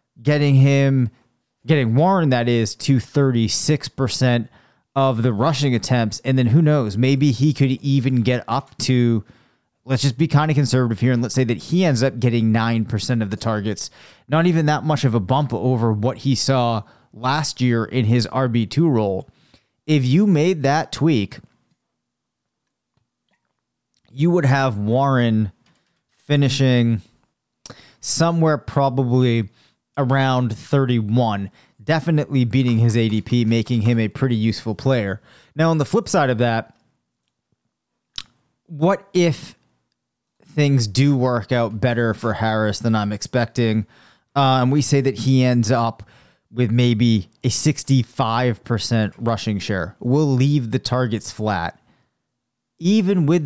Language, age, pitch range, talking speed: English, 30-49, 115-140 Hz, 140 wpm